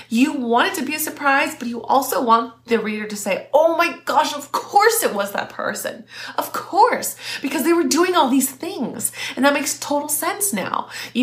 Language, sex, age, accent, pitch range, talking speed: English, female, 20-39, American, 205-275 Hz, 215 wpm